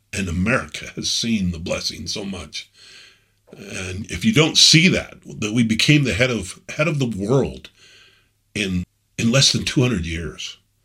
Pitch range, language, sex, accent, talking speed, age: 90-120 Hz, English, male, American, 165 wpm, 50-69